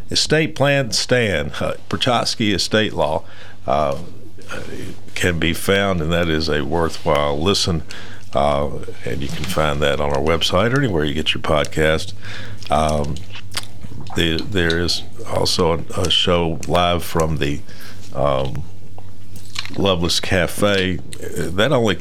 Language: English